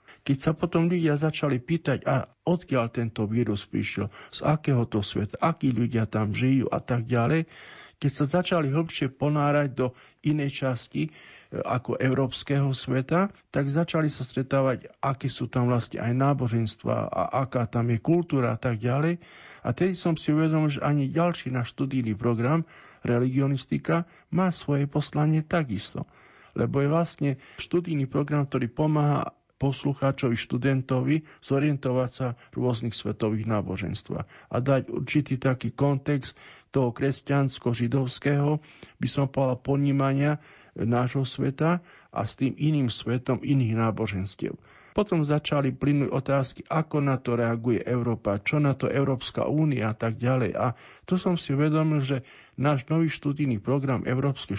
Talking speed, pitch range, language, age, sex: 145 wpm, 125-150 Hz, Slovak, 50-69, male